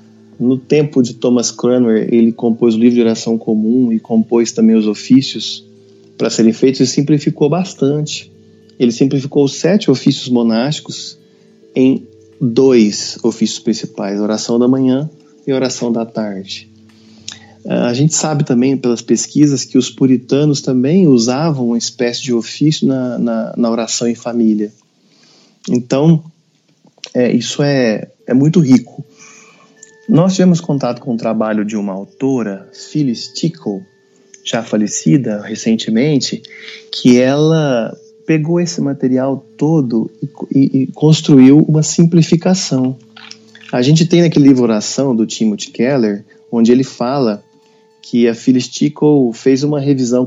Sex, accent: male, Brazilian